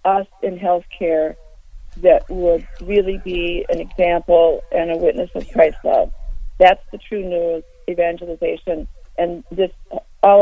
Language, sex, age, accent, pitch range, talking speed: English, female, 40-59, American, 170-195 Hz, 130 wpm